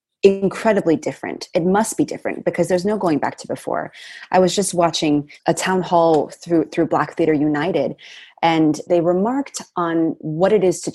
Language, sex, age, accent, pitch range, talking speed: English, female, 20-39, American, 155-190 Hz, 180 wpm